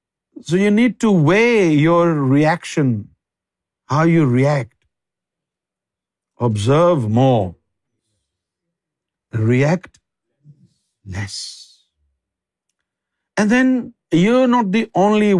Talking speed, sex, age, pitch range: 80 wpm, male, 50-69, 130-175 Hz